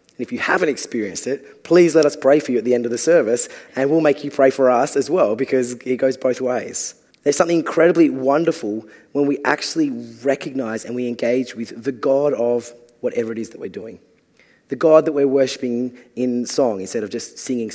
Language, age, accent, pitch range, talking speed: English, 20-39, Australian, 120-160 Hz, 215 wpm